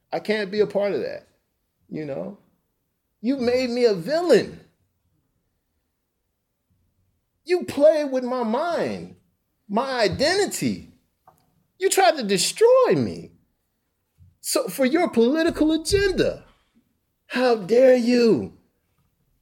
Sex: male